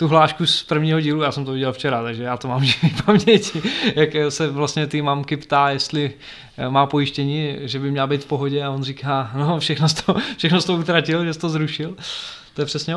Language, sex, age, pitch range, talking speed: Czech, male, 20-39, 140-155 Hz, 210 wpm